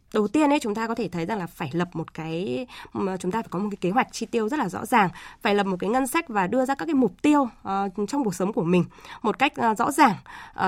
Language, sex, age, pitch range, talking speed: Vietnamese, female, 20-39, 180-240 Hz, 300 wpm